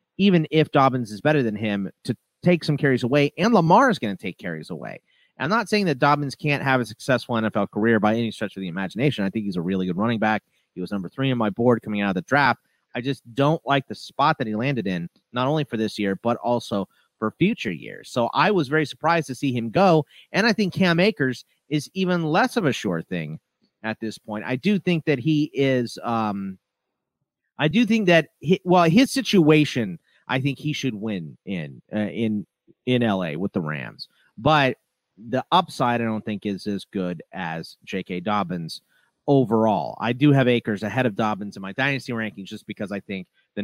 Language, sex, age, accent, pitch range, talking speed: English, male, 30-49, American, 105-150 Hz, 215 wpm